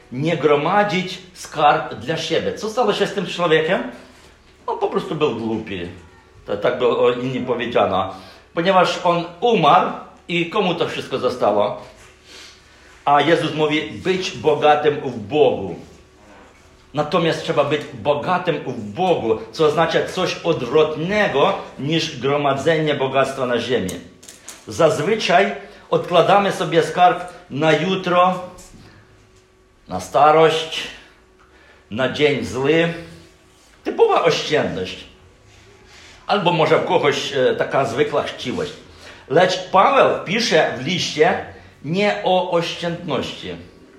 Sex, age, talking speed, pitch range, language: male, 50-69, 110 wpm, 135-180 Hz, Polish